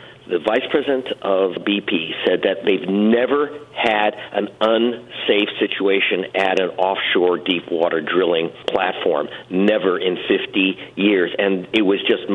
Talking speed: 135 wpm